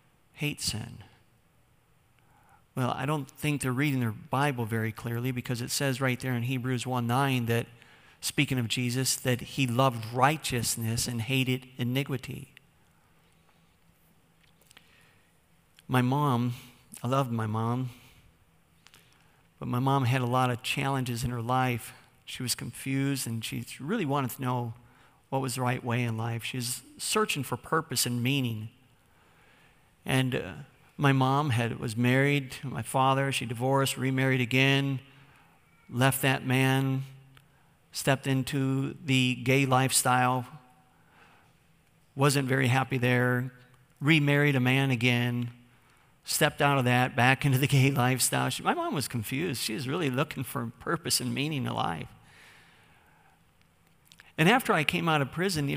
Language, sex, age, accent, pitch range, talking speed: English, male, 50-69, American, 125-140 Hz, 140 wpm